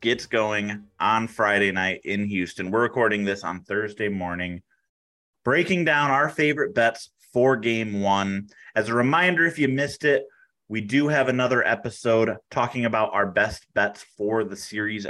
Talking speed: 165 wpm